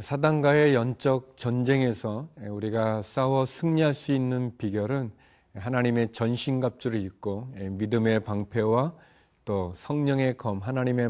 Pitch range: 105-130 Hz